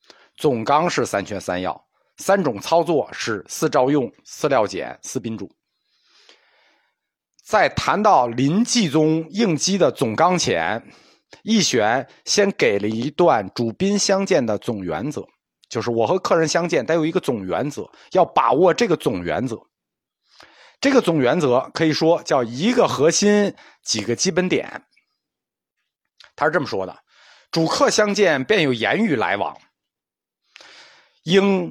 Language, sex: Chinese, male